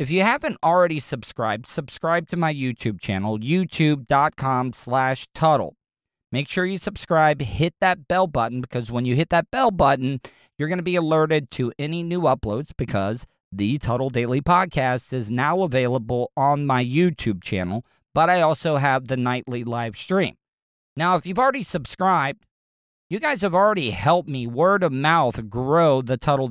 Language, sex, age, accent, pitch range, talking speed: English, male, 40-59, American, 125-170 Hz, 165 wpm